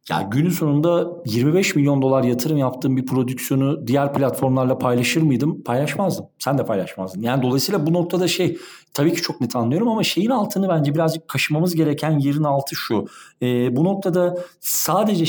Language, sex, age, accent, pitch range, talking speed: Turkish, male, 40-59, native, 125-170 Hz, 165 wpm